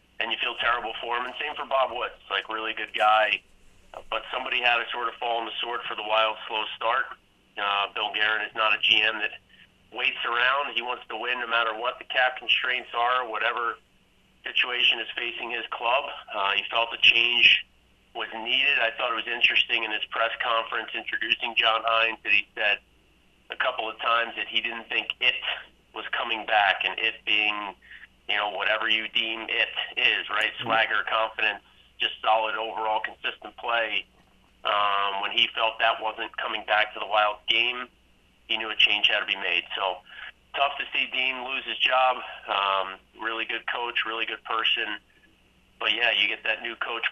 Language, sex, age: English, male, 40-59